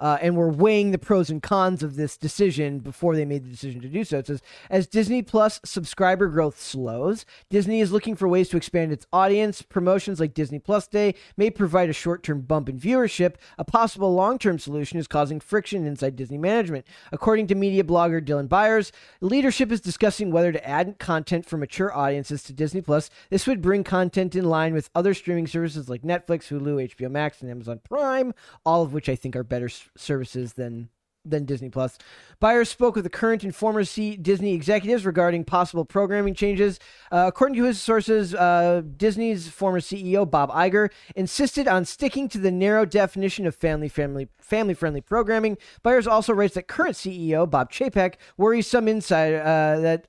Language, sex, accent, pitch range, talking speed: English, male, American, 155-210 Hz, 190 wpm